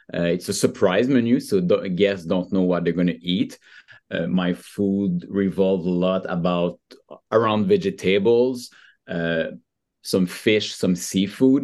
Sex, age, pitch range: male, 30-49, 90-100 Hz